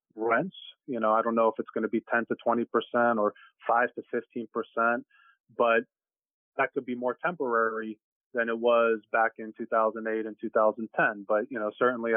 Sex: male